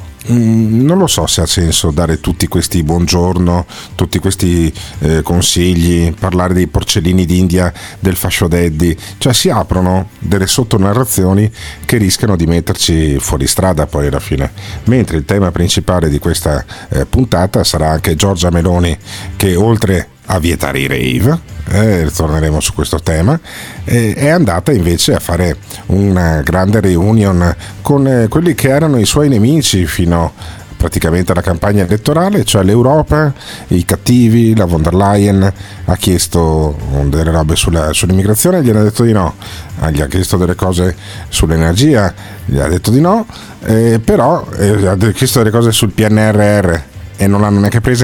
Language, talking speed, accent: Italian, 155 wpm, native